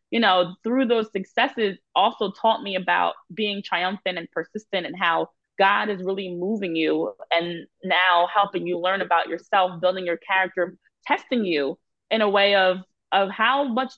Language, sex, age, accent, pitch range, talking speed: English, female, 20-39, American, 185-240 Hz, 170 wpm